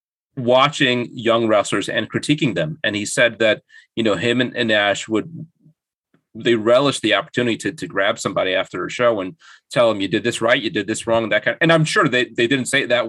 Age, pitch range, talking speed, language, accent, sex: 30-49, 105-135 Hz, 240 wpm, English, American, male